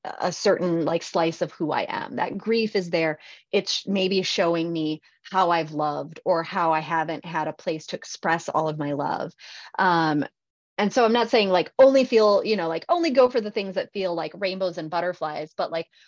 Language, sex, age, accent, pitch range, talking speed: English, female, 30-49, American, 160-200 Hz, 215 wpm